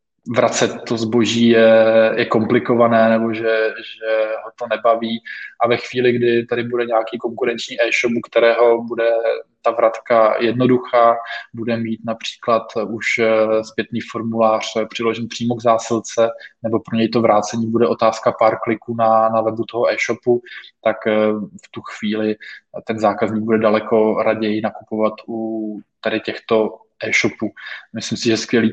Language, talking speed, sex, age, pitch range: Czech, 145 wpm, male, 20-39, 110-115 Hz